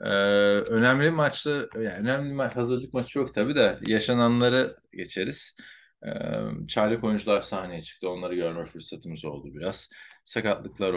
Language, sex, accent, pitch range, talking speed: Turkish, male, native, 100-125 Hz, 130 wpm